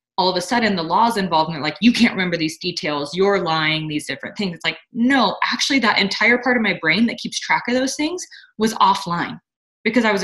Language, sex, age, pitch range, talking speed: English, female, 20-39, 175-235 Hz, 240 wpm